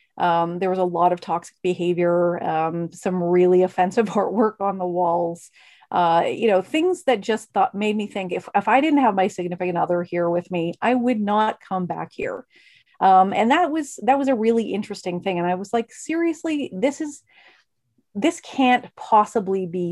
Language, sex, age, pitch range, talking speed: English, female, 40-59, 180-230 Hz, 195 wpm